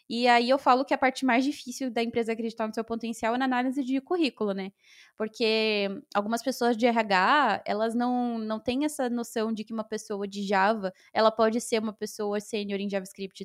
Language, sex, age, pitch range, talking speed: Portuguese, female, 20-39, 205-265 Hz, 205 wpm